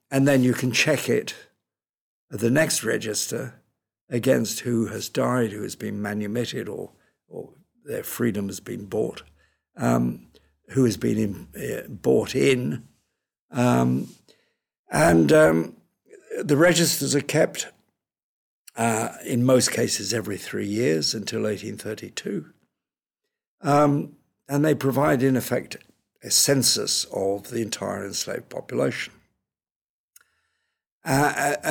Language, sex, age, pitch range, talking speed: English, male, 60-79, 105-140 Hz, 115 wpm